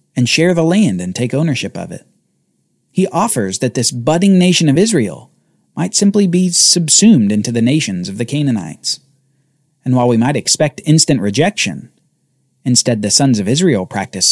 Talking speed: 170 wpm